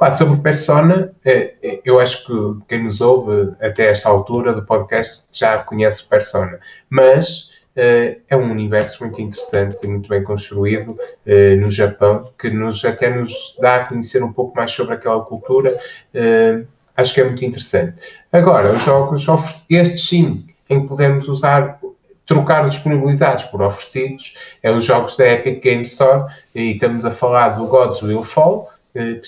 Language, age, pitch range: Portuguese, 20-39, 110-150 Hz